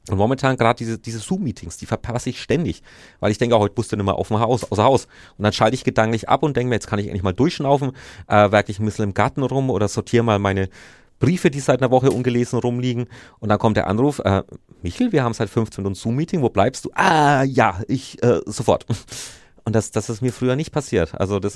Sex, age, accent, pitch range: male, 30-49, German, 105-125 Hz